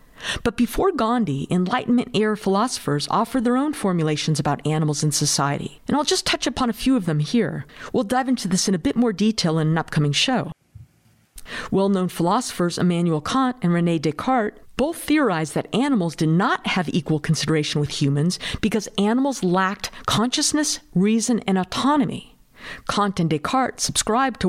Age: 50-69